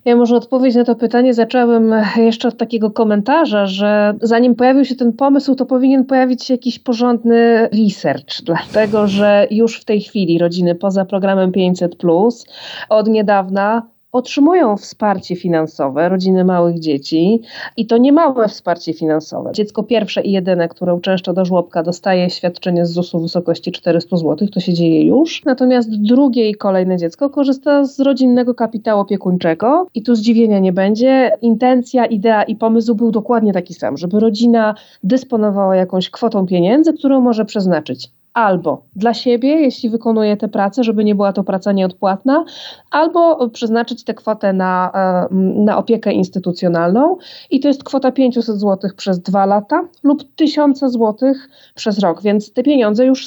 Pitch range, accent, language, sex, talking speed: 190-250 Hz, native, Polish, female, 155 wpm